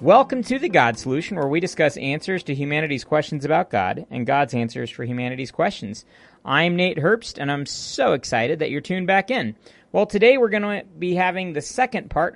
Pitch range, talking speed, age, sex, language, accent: 125-180 Hz, 205 wpm, 40-59, male, English, American